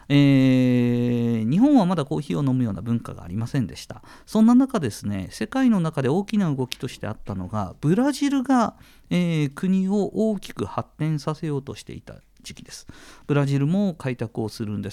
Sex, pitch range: male, 110-160 Hz